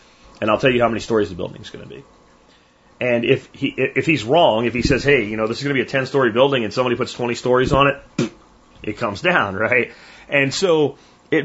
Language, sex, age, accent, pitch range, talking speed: Spanish, male, 30-49, American, 110-140 Hz, 240 wpm